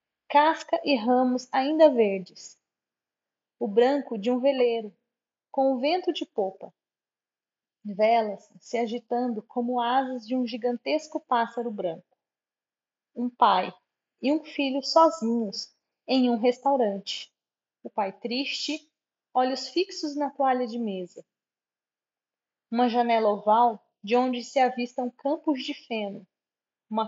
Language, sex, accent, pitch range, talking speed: Portuguese, female, Brazilian, 225-270 Hz, 120 wpm